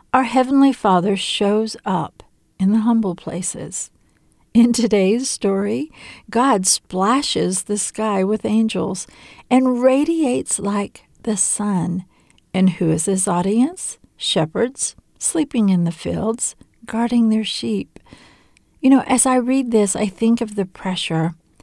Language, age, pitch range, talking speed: English, 50-69, 195-245 Hz, 130 wpm